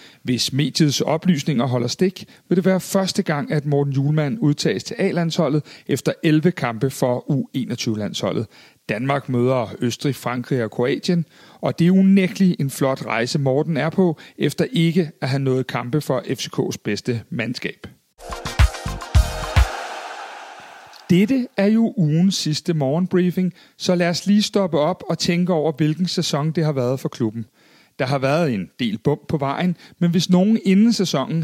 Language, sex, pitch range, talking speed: Danish, male, 145-185 Hz, 155 wpm